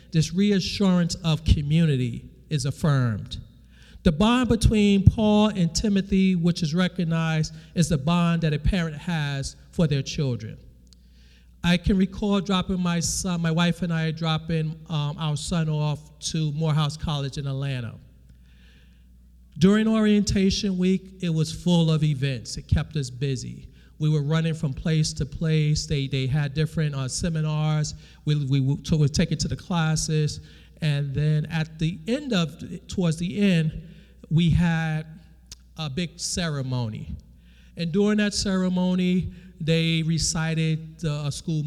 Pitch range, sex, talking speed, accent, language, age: 140-175 Hz, male, 145 wpm, American, English, 40-59